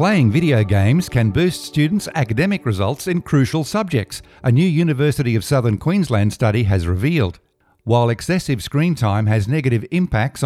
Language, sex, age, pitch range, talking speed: English, male, 50-69, 110-150 Hz, 155 wpm